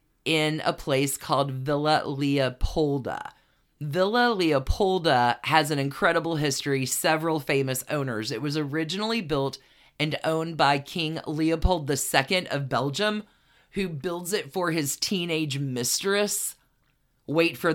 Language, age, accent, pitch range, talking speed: English, 40-59, American, 135-170 Hz, 120 wpm